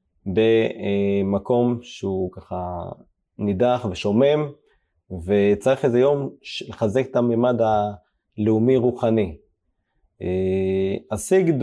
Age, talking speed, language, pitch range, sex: 20-39, 70 wpm, Hebrew, 105-130 Hz, male